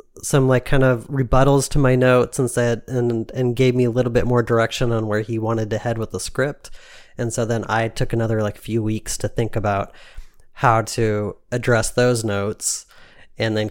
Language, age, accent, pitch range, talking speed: English, 30-49, American, 105-120 Hz, 205 wpm